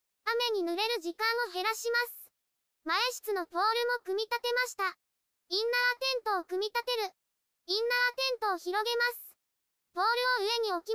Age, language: 20-39, Japanese